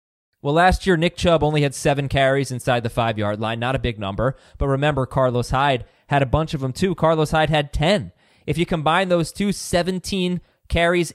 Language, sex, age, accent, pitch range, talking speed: English, male, 20-39, American, 135-175 Hz, 205 wpm